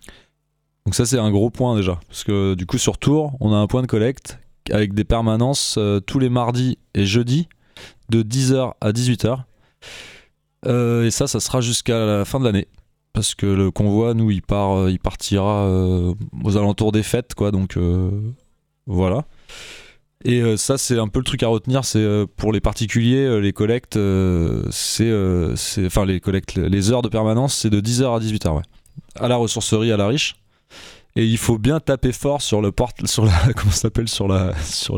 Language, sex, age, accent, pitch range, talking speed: French, male, 20-39, French, 105-130 Hz, 185 wpm